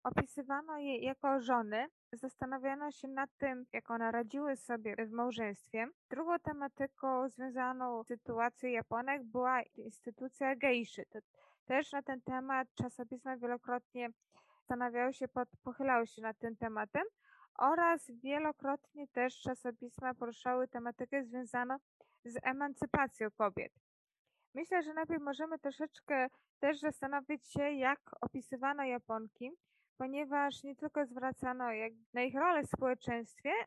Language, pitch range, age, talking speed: Polish, 240-275 Hz, 20-39, 120 wpm